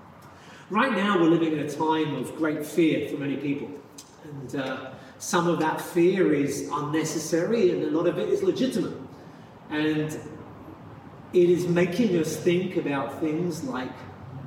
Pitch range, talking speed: 150-185 Hz, 155 wpm